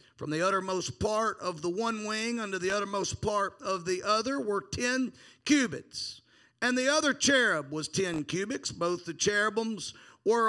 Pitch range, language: 175-265 Hz, English